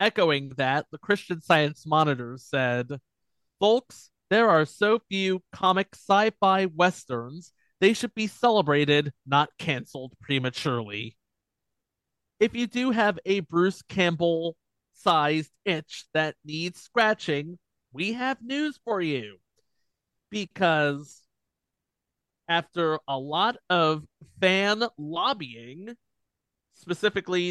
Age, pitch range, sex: 30-49, 150-195 Hz, male